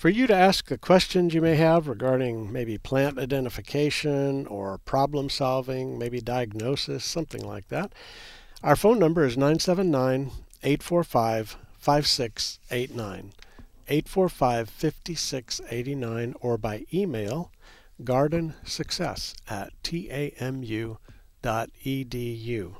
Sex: male